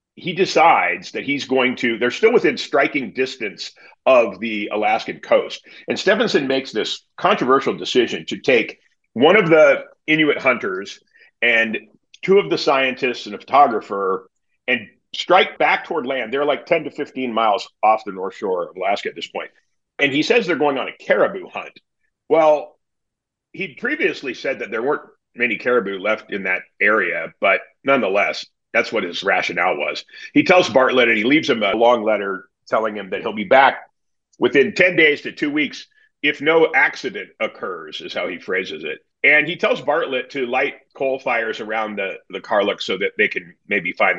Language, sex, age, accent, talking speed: English, male, 50-69, American, 185 wpm